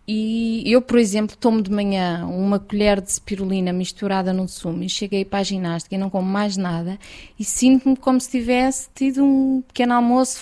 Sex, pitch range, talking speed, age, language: female, 190-235 Hz, 190 wpm, 20-39, Portuguese